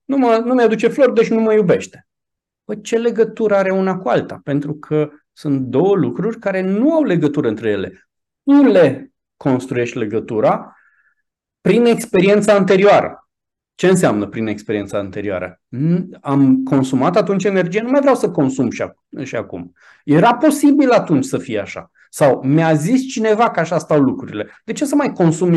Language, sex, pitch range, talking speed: Romanian, male, 150-210 Hz, 160 wpm